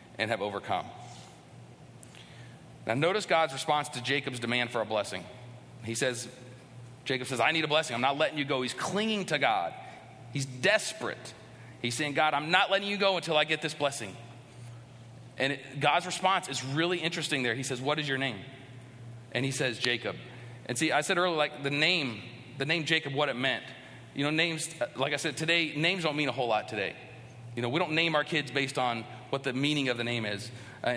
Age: 40-59